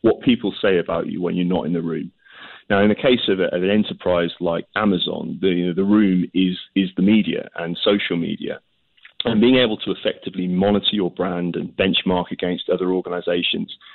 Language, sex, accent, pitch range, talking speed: English, male, British, 90-95 Hz, 185 wpm